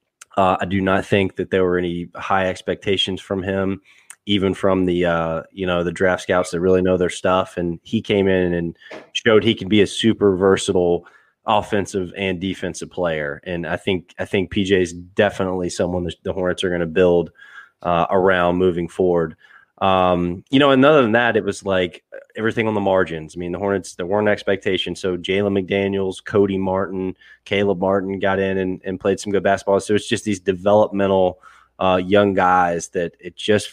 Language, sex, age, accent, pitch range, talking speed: English, male, 20-39, American, 90-100 Hz, 195 wpm